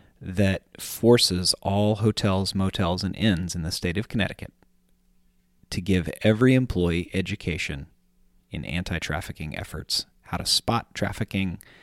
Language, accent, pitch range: English, American, 90-110 Hz